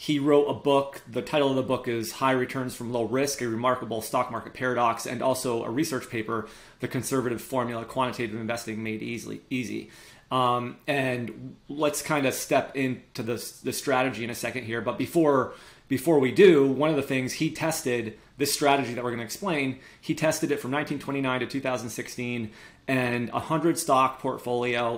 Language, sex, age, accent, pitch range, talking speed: English, male, 30-49, American, 115-135 Hz, 180 wpm